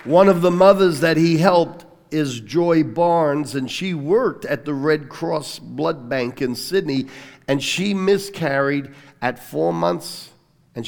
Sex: male